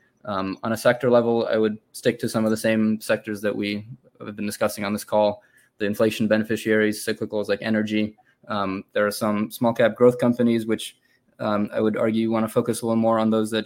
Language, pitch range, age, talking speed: English, 110-120 Hz, 20-39, 225 wpm